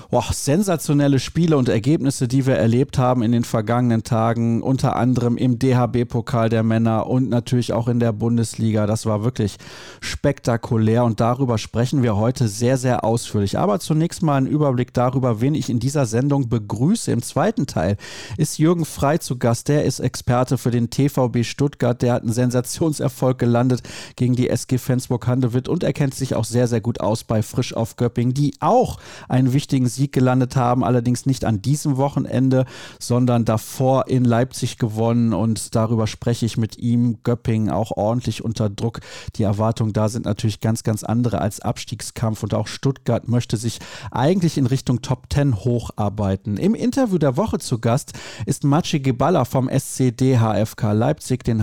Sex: male